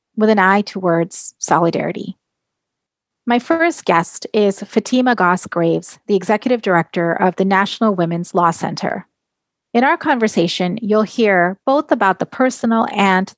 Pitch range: 180-215 Hz